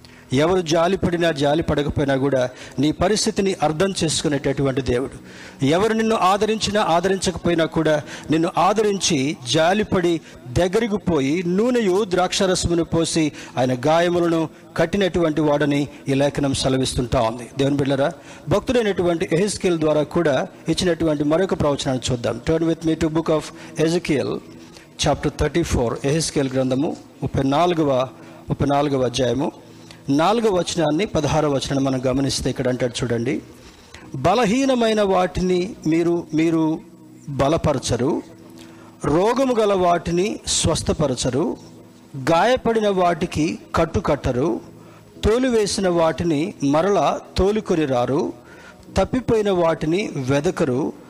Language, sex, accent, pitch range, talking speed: Telugu, male, native, 140-180 Hz, 95 wpm